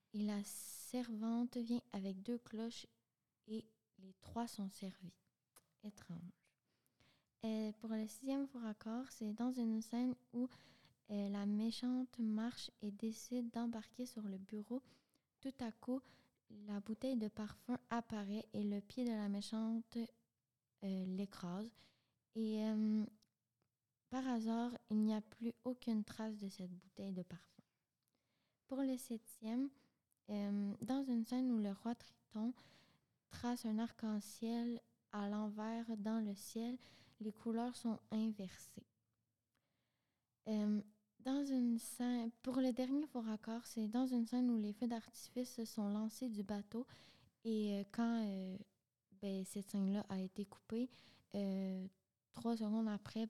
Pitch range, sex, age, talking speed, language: 200-235 Hz, female, 20-39, 135 wpm, French